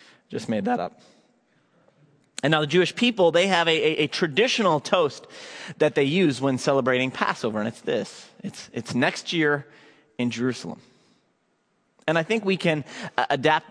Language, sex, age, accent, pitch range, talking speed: English, male, 30-49, American, 135-180 Hz, 160 wpm